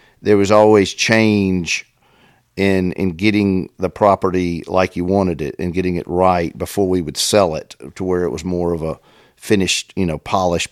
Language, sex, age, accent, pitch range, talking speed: English, male, 50-69, American, 90-100 Hz, 185 wpm